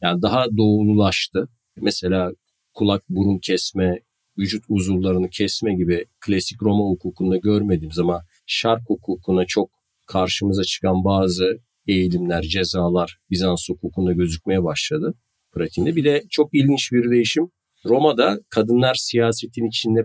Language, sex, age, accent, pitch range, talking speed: Turkish, male, 50-69, native, 90-115 Hz, 110 wpm